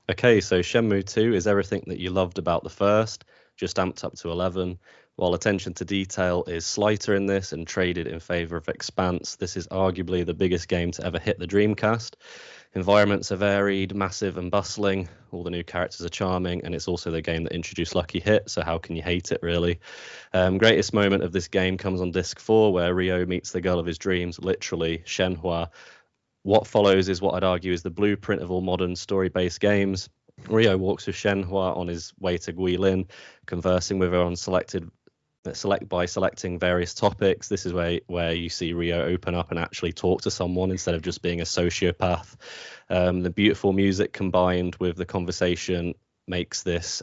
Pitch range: 85-95 Hz